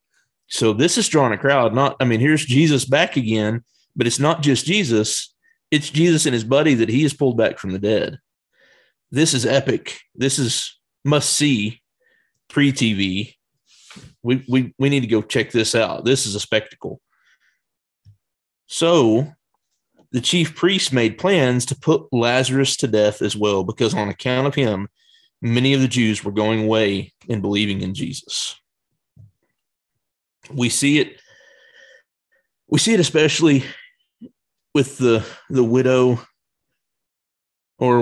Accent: American